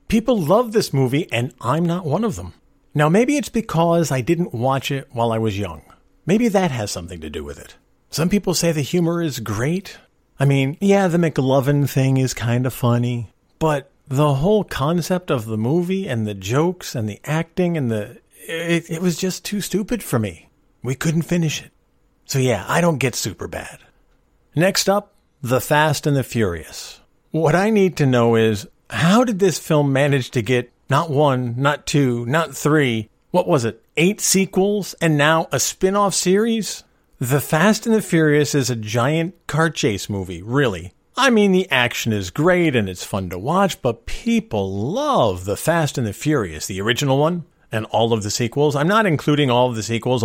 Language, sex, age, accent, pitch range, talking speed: English, male, 50-69, American, 115-170 Hz, 195 wpm